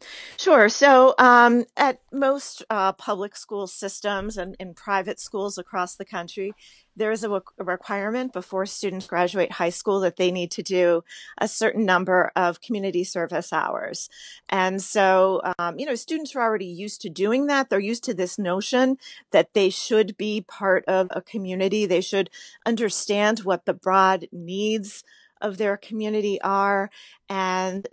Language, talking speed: English, 160 wpm